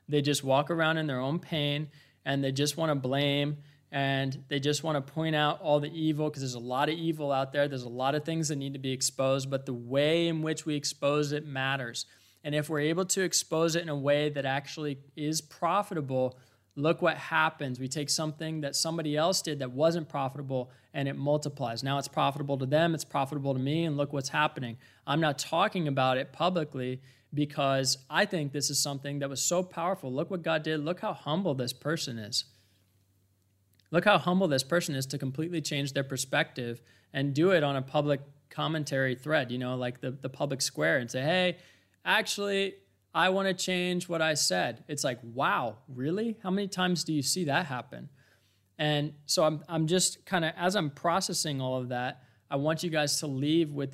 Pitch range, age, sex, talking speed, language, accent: 135-160 Hz, 20-39, male, 210 wpm, English, American